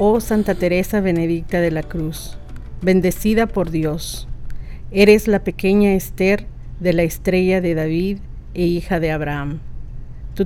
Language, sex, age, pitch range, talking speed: Spanish, female, 50-69, 170-200 Hz, 140 wpm